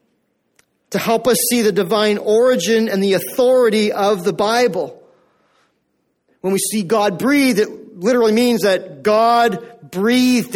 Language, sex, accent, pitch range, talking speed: English, male, American, 195-240 Hz, 135 wpm